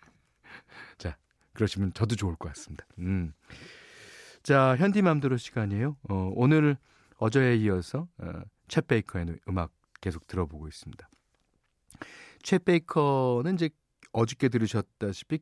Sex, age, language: male, 40-59, Korean